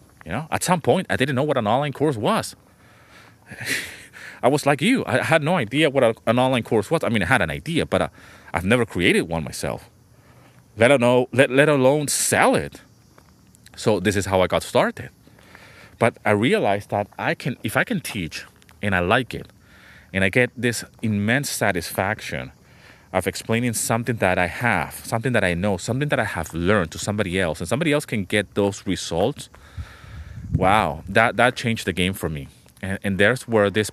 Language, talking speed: English, 195 wpm